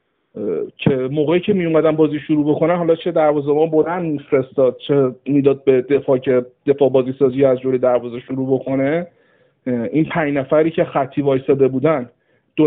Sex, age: male, 50-69